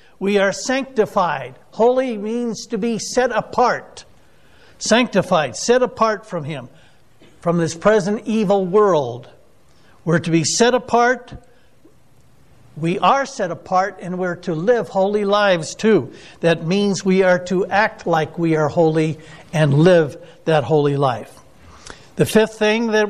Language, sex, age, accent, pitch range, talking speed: English, male, 60-79, American, 165-220 Hz, 140 wpm